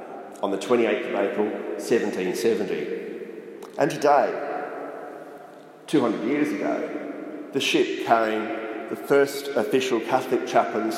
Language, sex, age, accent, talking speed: English, male, 40-59, Australian, 115 wpm